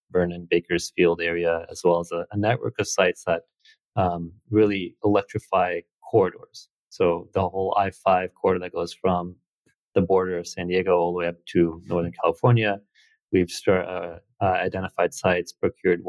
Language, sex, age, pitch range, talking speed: English, male, 30-49, 85-105 Hz, 155 wpm